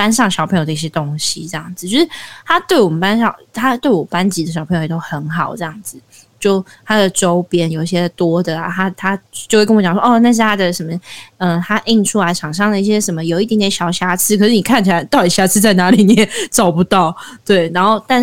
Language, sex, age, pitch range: Chinese, female, 20-39, 170-220 Hz